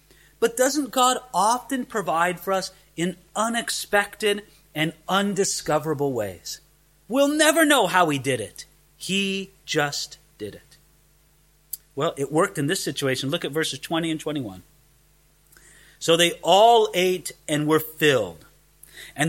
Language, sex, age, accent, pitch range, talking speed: English, male, 30-49, American, 145-195 Hz, 135 wpm